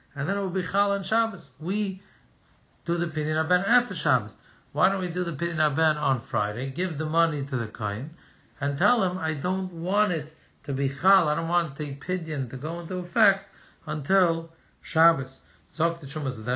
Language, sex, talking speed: English, male, 185 wpm